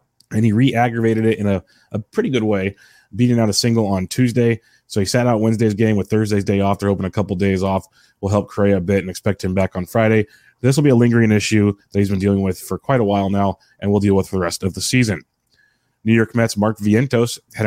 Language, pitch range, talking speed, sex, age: English, 100-120 Hz, 260 wpm, male, 30-49